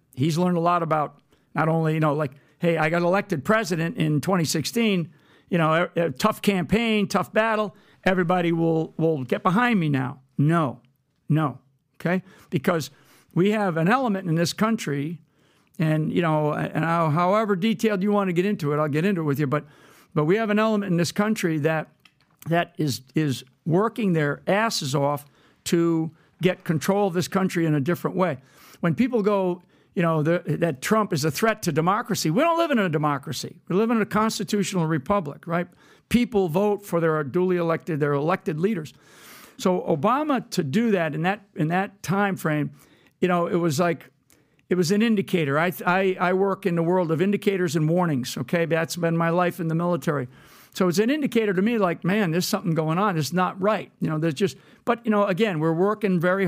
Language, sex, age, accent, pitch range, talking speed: English, male, 60-79, American, 155-195 Hz, 200 wpm